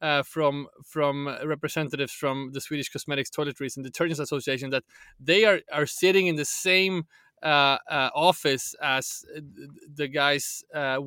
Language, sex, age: English, male, 20-39